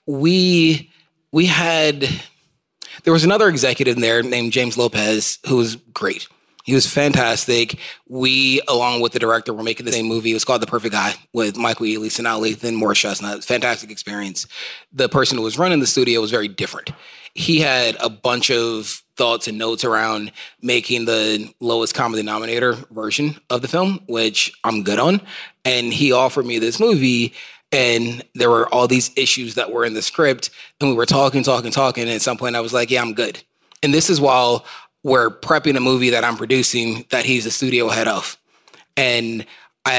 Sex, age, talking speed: male, 30-49, 190 wpm